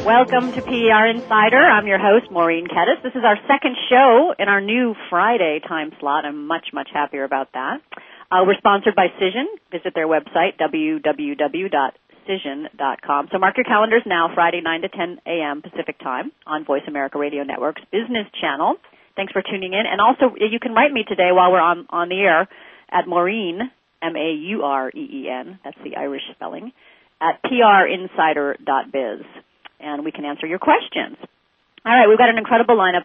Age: 40-59